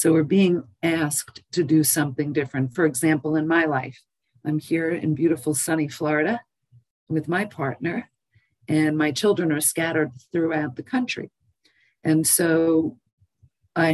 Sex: female